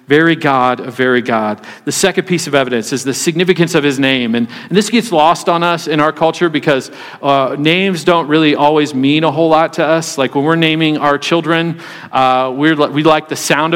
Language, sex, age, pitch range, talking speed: English, male, 40-59, 145-170 Hz, 220 wpm